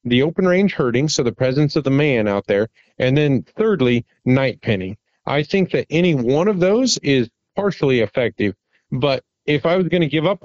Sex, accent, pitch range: male, American, 125-165 Hz